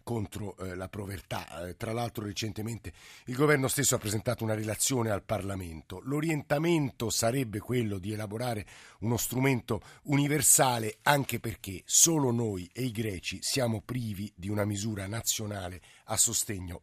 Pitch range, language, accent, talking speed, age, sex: 100-125 Hz, Italian, native, 135 wpm, 50-69, male